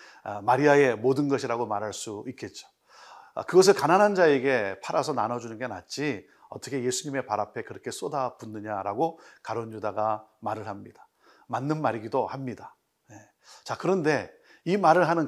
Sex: male